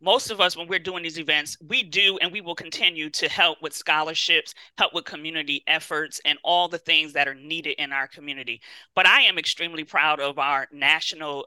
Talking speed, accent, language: 210 wpm, American, English